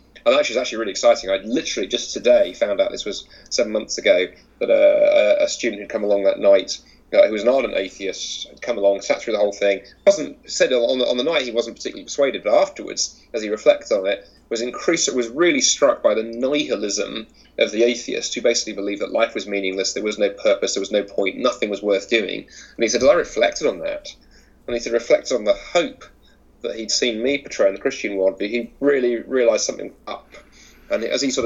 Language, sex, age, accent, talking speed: English, male, 30-49, British, 235 wpm